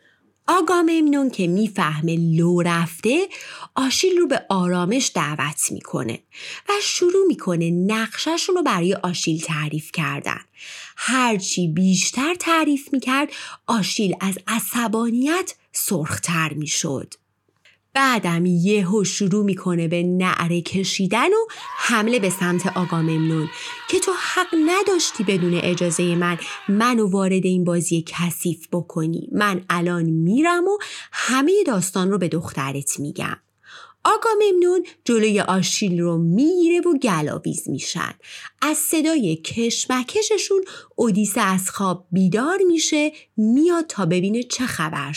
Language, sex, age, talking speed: Persian, female, 30-49, 115 wpm